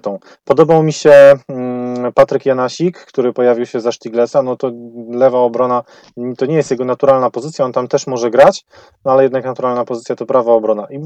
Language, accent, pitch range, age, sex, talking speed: Polish, native, 110-135 Hz, 20-39, male, 180 wpm